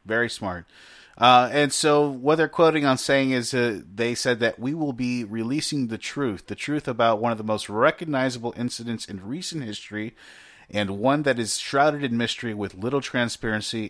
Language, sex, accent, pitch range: English, male, American, 100-120 Hz